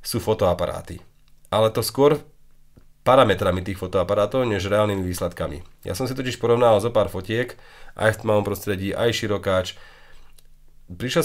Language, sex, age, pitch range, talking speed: English, male, 30-49, 95-120 Hz, 140 wpm